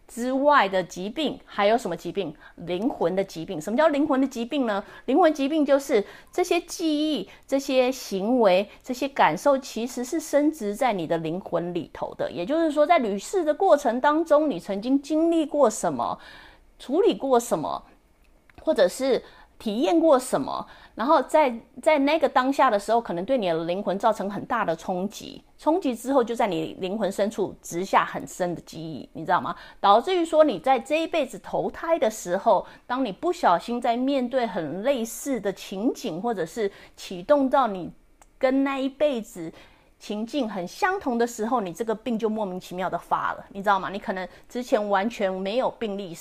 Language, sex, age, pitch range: English, female, 30-49, 190-280 Hz